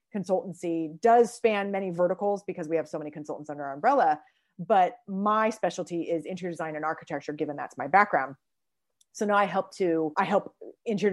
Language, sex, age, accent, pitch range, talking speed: English, female, 30-49, American, 165-205 Hz, 185 wpm